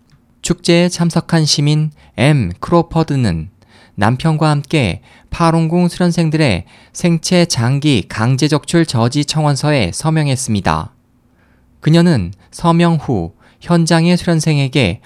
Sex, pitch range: male, 120-160 Hz